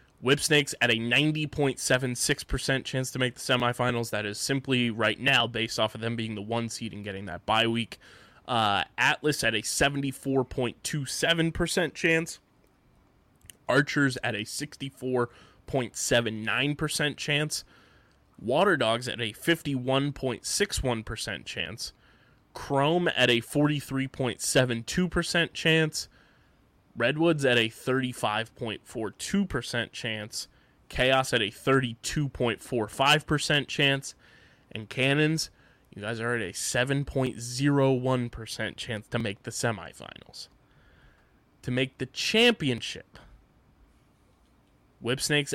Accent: American